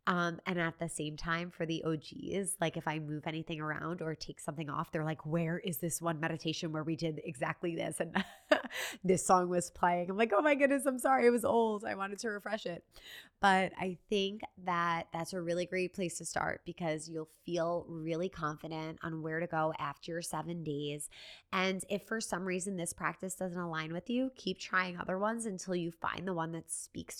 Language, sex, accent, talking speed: English, female, American, 215 wpm